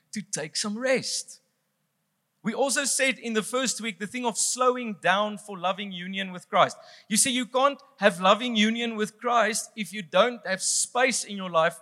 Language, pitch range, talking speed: English, 165-225 Hz, 195 wpm